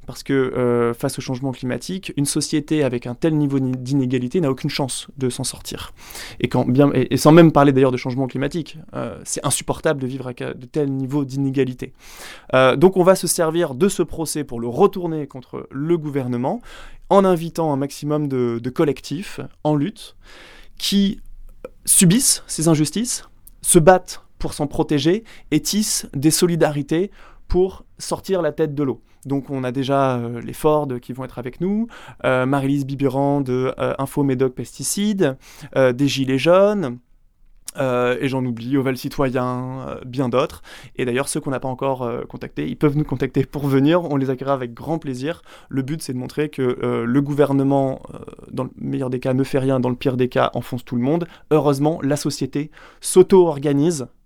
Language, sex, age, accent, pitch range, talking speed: French, male, 20-39, French, 130-160 Hz, 190 wpm